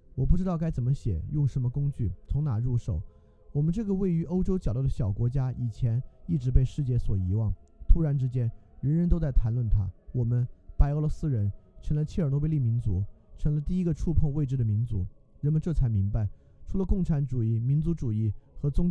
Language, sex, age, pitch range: Chinese, male, 20-39, 105-150 Hz